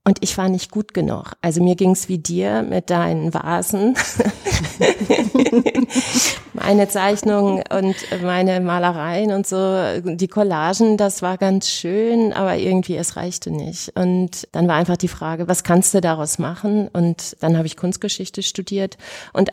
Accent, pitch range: German, 160-190 Hz